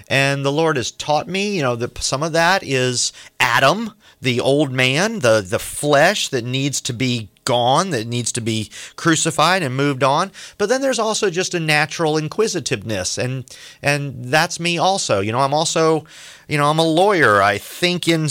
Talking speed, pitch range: 190 wpm, 125-175 Hz